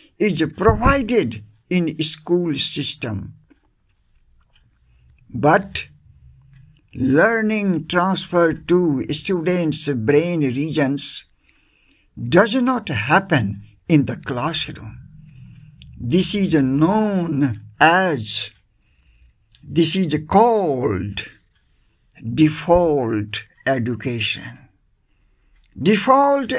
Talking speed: 65 wpm